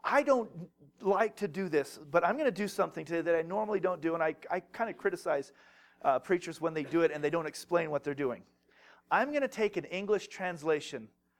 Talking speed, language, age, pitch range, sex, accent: 230 wpm, English, 40-59, 135-180 Hz, male, American